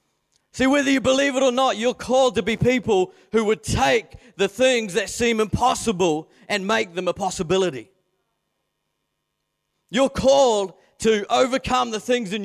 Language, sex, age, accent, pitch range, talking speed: English, male, 40-59, Australian, 170-230 Hz, 155 wpm